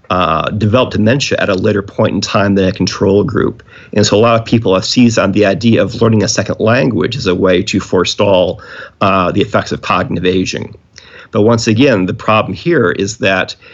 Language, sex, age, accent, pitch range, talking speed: English, male, 40-59, American, 95-110 Hz, 210 wpm